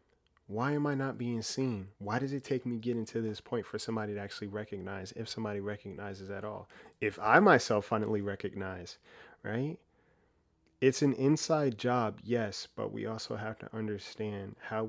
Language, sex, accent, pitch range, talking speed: English, male, American, 100-120 Hz, 175 wpm